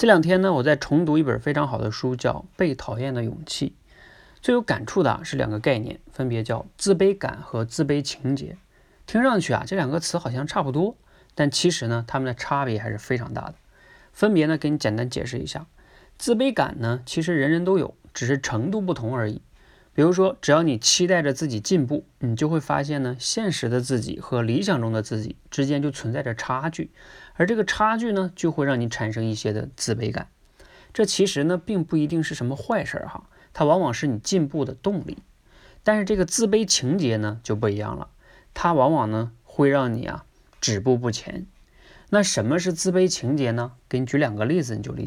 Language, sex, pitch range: Chinese, male, 120-180 Hz